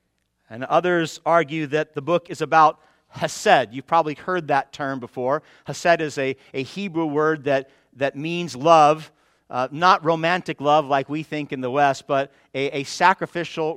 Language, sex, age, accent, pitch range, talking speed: English, male, 50-69, American, 145-190 Hz, 170 wpm